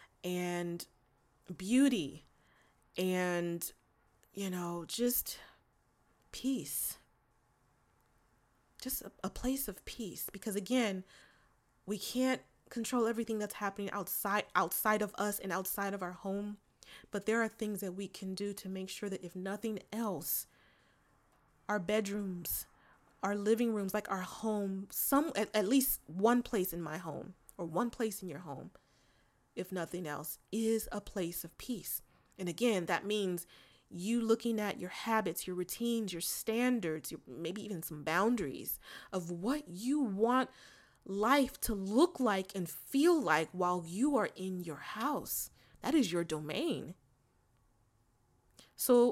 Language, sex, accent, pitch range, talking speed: English, female, American, 180-230 Hz, 140 wpm